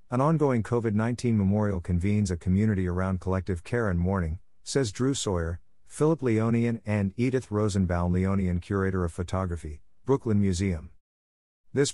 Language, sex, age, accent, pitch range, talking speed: English, male, 50-69, American, 90-115 Hz, 135 wpm